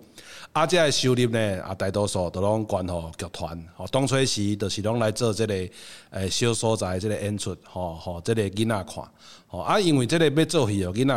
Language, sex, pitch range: Chinese, male, 95-125 Hz